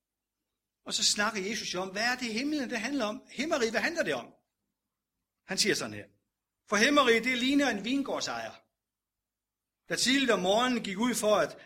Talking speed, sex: 185 wpm, male